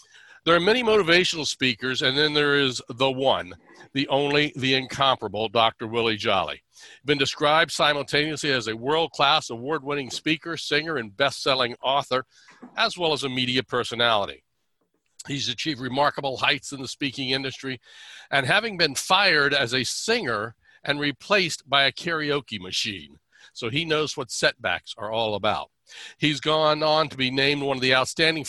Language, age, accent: English, 60-79, American